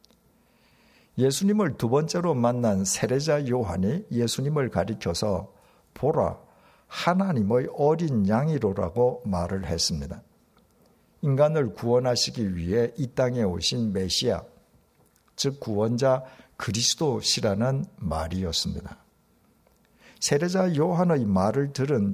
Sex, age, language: male, 60-79, Korean